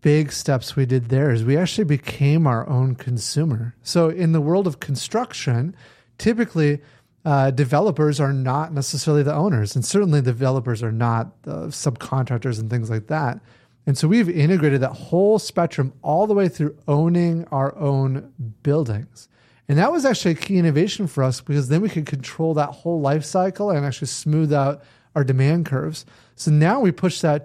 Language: English